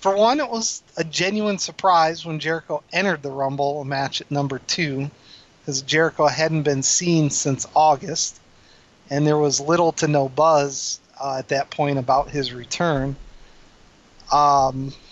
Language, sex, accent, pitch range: English, male, American, 135-170 Hz